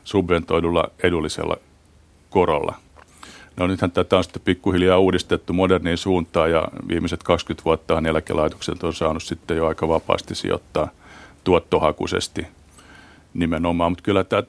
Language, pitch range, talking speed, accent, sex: Finnish, 80-95 Hz, 120 wpm, native, male